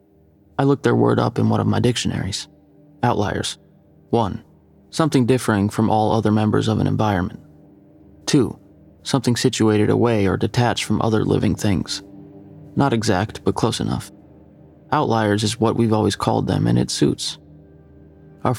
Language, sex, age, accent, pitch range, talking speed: English, male, 20-39, American, 105-120 Hz, 150 wpm